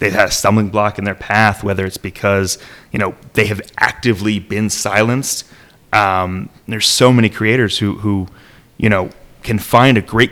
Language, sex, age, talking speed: English, male, 30-49, 180 wpm